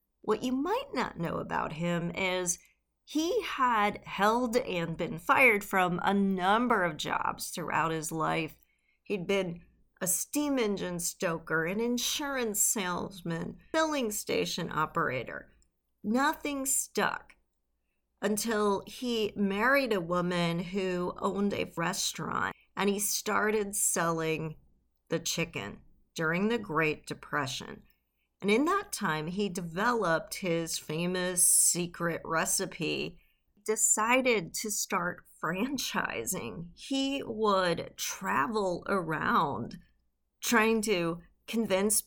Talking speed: 110 wpm